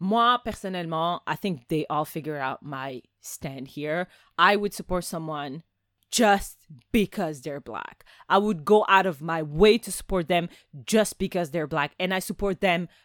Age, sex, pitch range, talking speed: 30-49, female, 170-225 Hz, 170 wpm